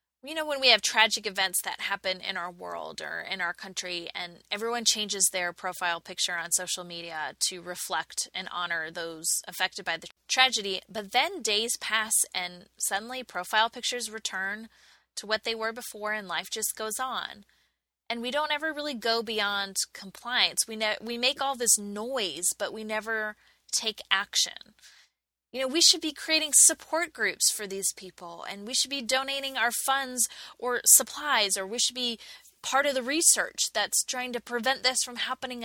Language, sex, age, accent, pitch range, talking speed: English, female, 20-39, American, 195-255 Hz, 180 wpm